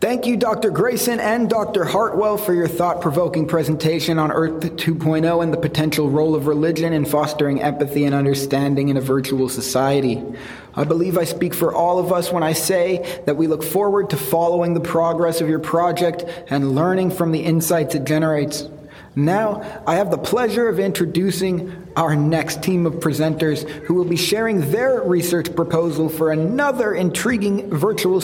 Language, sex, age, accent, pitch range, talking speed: English, male, 30-49, American, 155-195 Hz, 170 wpm